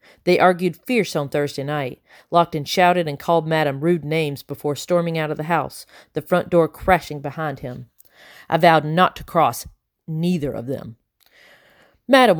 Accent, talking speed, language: American, 165 wpm, English